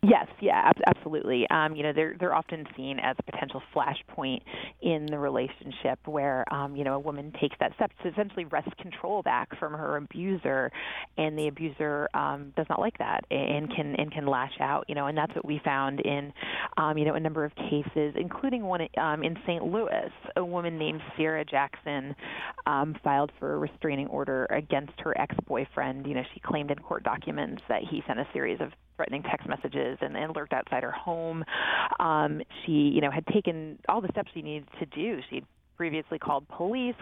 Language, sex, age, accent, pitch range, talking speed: English, female, 30-49, American, 145-175 Hz, 200 wpm